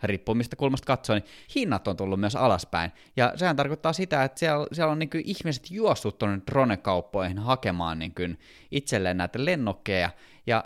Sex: male